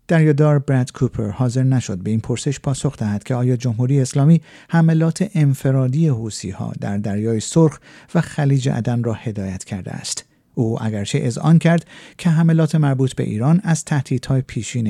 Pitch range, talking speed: 120-160 Hz, 160 wpm